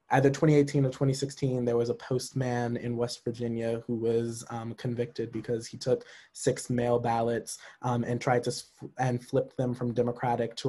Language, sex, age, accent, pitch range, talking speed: English, male, 20-39, American, 115-130 Hz, 180 wpm